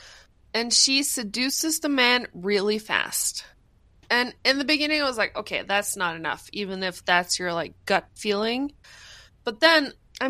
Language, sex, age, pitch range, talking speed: English, female, 20-39, 210-295 Hz, 165 wpm